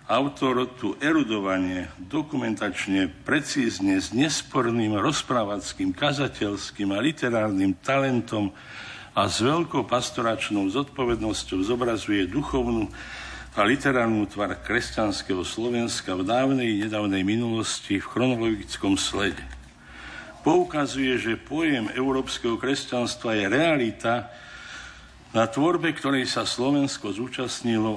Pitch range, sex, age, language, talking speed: 105-130 Hz, male, 50-69, Slovak, 95 wpm